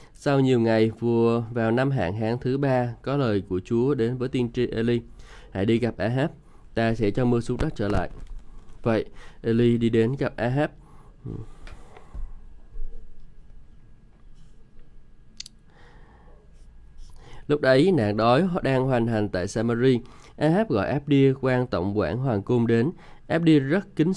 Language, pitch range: Vietnamese, 110-140 Hz